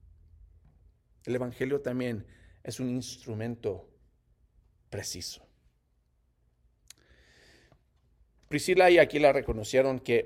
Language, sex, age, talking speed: Spanish, male, 40-59, 70 wpm